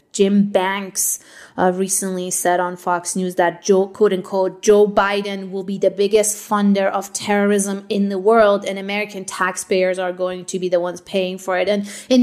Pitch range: 180-200 Hz